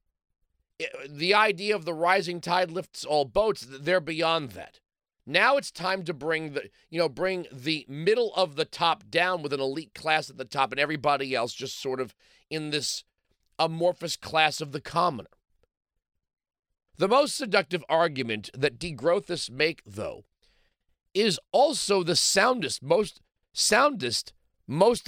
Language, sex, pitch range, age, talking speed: English, male, 145-190 Hz, 40-59, 150 wpm